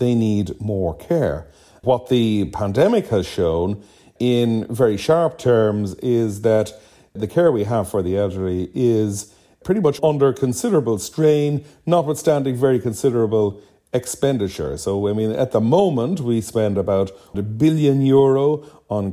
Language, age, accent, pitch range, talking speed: English, 40-59, Irish, 100-135 Hz, 140 wpm